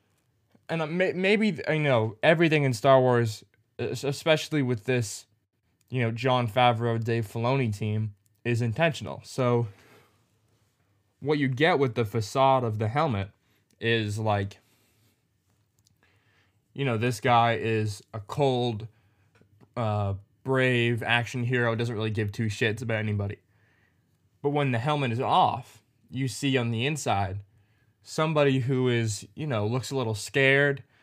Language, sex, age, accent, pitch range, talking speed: English, male, 20-39, American, 105-135 Hz, 135 wpm